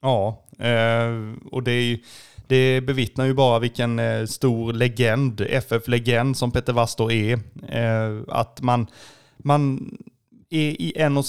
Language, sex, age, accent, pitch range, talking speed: Swedish, male, 20-39, native, 115-130 Hz, 115 wpm